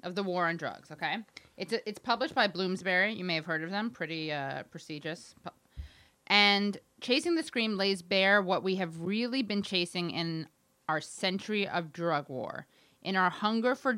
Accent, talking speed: American, 185 wpm